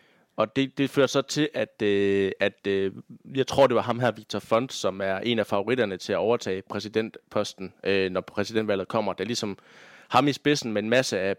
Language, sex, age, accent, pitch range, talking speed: Danish, male, 20-39, native, 100-120 Hz, 215 wpm